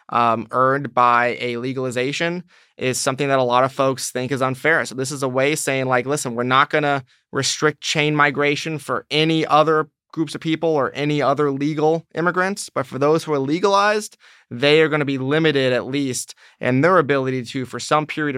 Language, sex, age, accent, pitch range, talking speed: English, male, 20-39, American, 125-150 Hz, 200 wpm